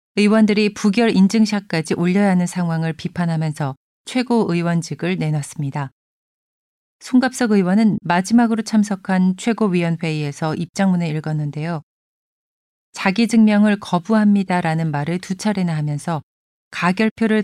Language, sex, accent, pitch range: Korean, female, native, 165-210 Hz